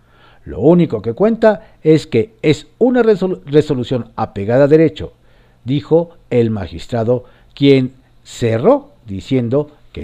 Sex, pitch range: male, 115-170 Hz